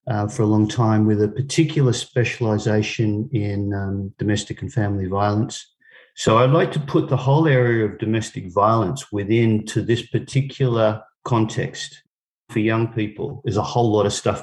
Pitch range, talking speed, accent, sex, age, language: 110-135 Hz, 165 wpm, Australian, male, 50-69, English